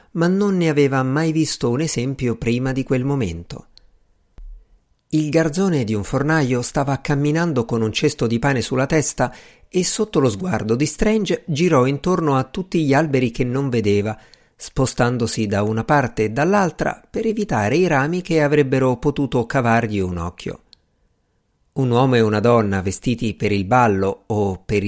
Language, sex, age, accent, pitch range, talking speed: Italian, male, 50-69, native, 115-155 Hz, 165 wpm